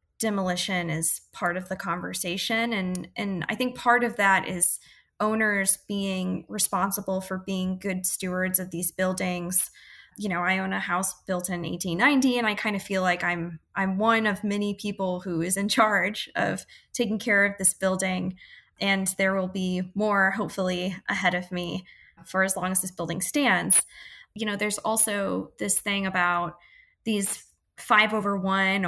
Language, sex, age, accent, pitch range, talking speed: English, female, 10-29, American, 185-210 Hz, 170 wpm